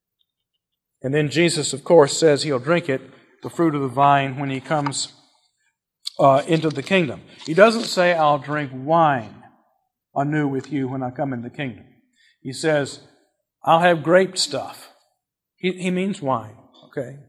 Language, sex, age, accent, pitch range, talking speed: English, male, 50-69, American, 135-180 Hz, 165 wpm